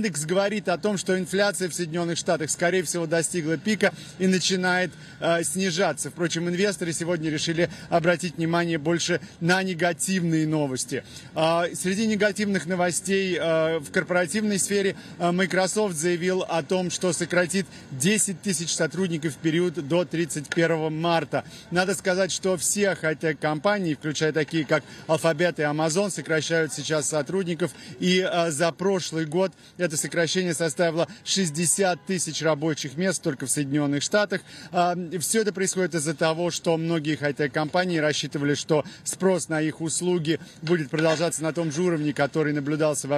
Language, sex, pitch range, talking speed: Russian, male, 155-185 Hz, 145 wpm